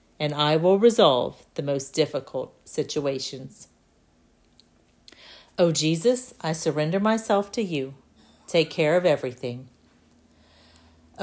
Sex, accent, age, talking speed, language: female, American, 40-59, 110 wpm, English